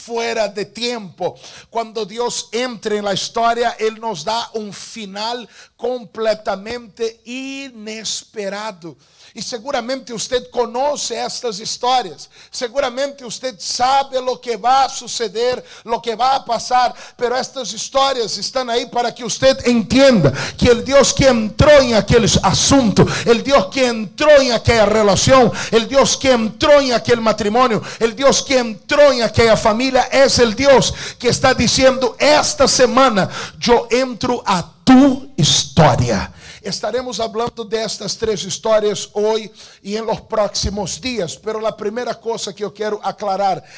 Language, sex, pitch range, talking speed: Spanish, male, 210-250 Hz, 145 wpm